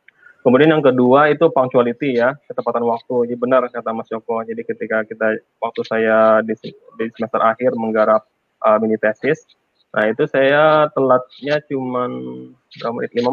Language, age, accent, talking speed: Indonesian, 20-39, native, 145 wpm